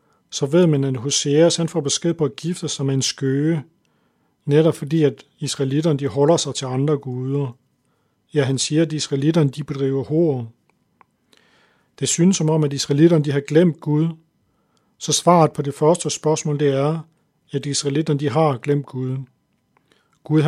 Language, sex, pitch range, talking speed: Danish, male, 140-155 Hz, 155 wpm